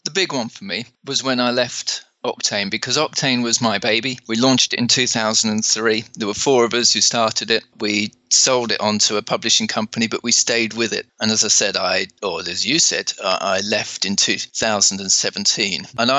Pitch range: 110-130 Hz